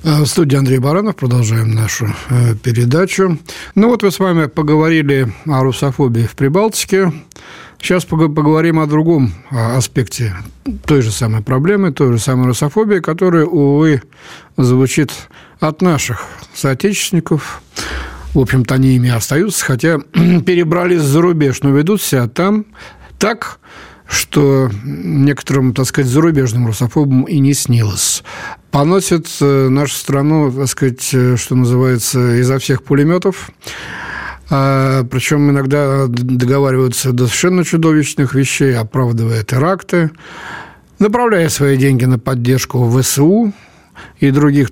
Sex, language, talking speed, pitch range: male, Russian, 115 wpm, 125-160 Hz